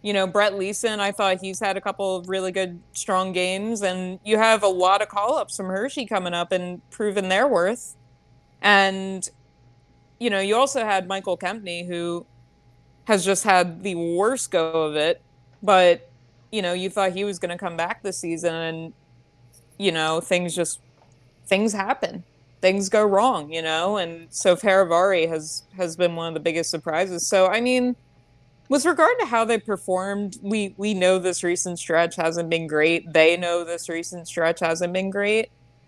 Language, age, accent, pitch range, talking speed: English, 20-39, American, 170-205 Hz, 180 wpm